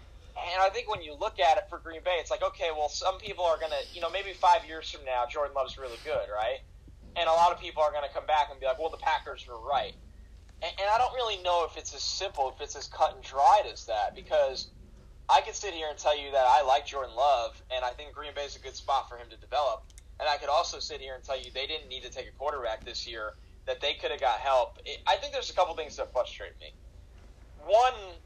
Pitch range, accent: 120-180 Hz, American